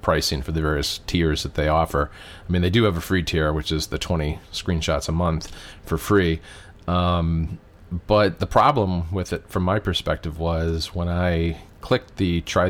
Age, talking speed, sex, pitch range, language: 40-59, 190 wpm, male, 85-100 Hz, English